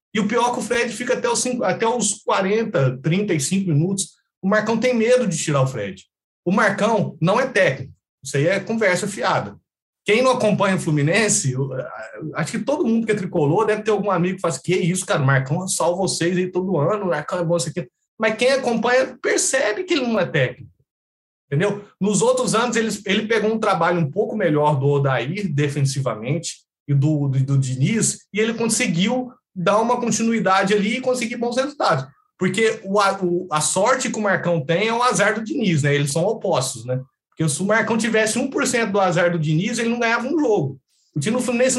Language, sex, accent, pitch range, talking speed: Portuguese, male, Brazilian, 170-230 Hz, 205 wpm